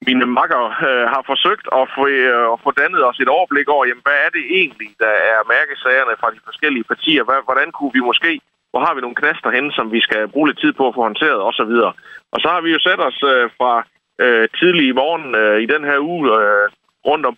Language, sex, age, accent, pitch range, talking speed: Danish, male, 30-49, native, 105-145 Hz, 240 wpm